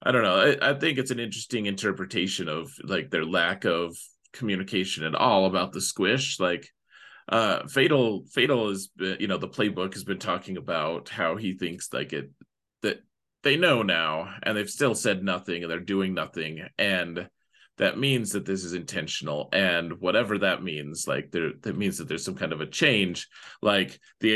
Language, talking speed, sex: English, 185 wpm, male